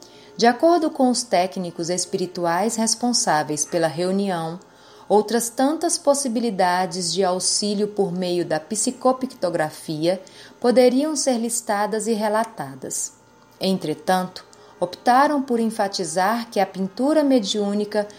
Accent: Brazilian